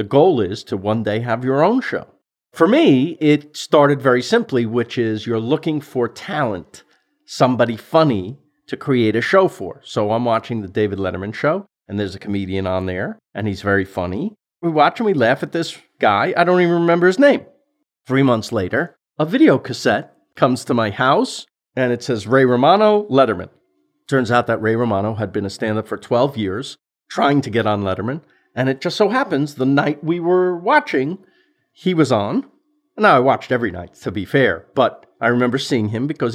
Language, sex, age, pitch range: English, male, 40-59, 115-170 Hz